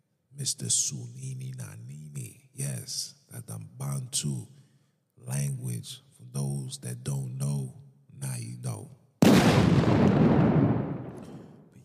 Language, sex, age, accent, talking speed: English, male, 40-59, American, 85 wpm